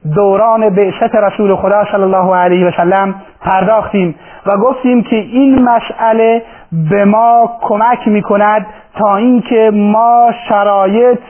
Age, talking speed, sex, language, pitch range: 40-59, 135 wpm, male, Persian, 195-225 Hz